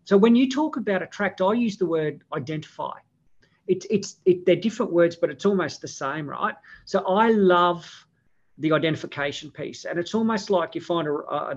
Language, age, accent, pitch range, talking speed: English, 50-69, Australian, 145-185 Hz, 190 wpm